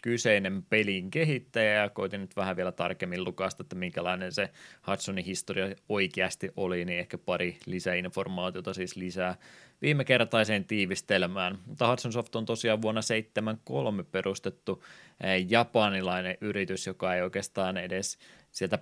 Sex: male